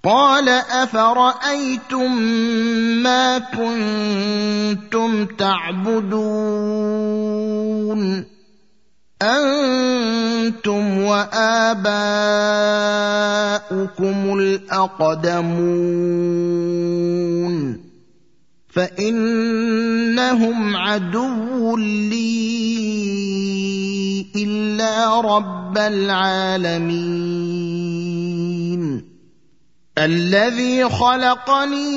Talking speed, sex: 30 wpm, male